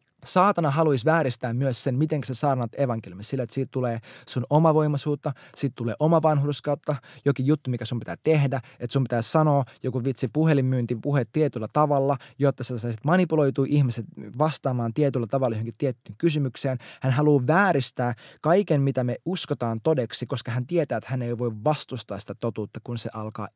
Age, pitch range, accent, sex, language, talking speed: 20-39, 120-155 Hz, native, male, Finnish, 170 wpm